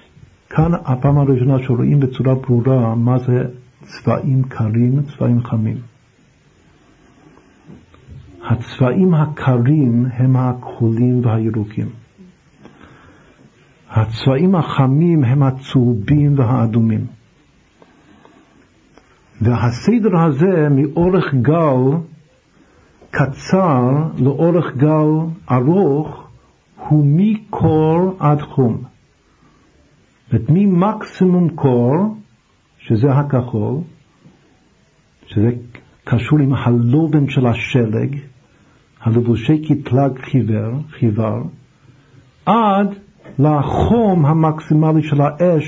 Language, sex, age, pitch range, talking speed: Hebrew, male, 60-79, 120-155 Hz, 70 wpm